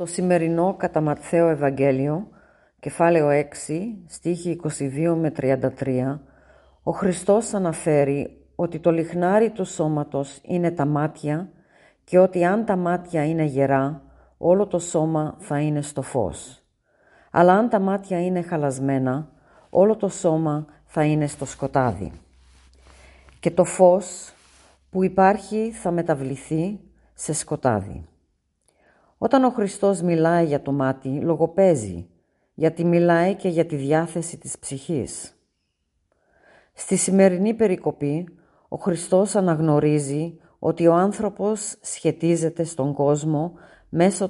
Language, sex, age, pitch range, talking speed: Greek, female, 40-59, 145-185 Hz, 120 wpm